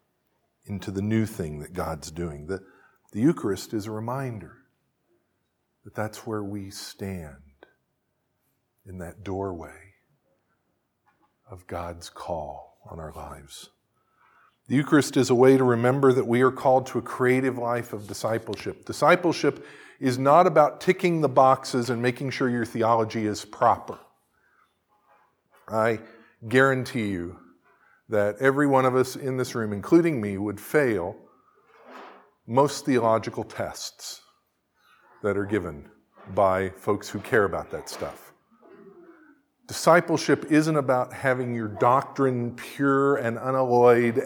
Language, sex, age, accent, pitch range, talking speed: English, male, 50-69, American, 100-135 Hz, 130 wpm